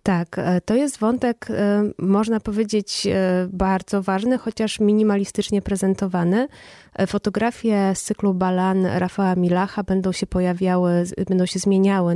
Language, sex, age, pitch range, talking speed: Polish, female, 20-39, 180-205 Hz, 115 wpm